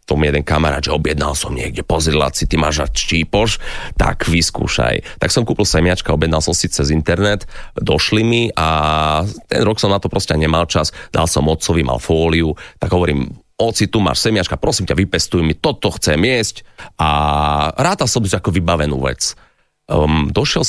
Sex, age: male, 30-49